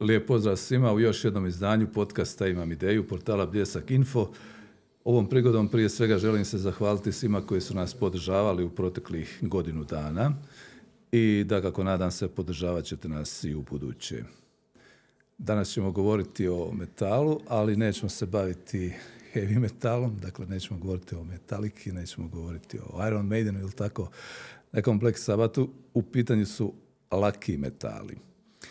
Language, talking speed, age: Croatian, 145 wpm, 50-69